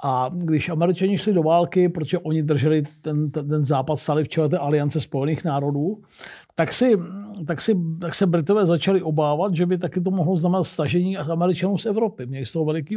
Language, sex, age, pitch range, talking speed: Czech, male, 50-69, 160-190 Hz, 200 wpm